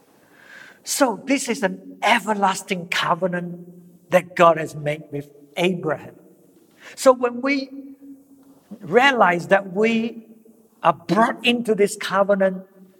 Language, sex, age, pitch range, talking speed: English, male, 60-79, 170-215 Hz, 105 wpm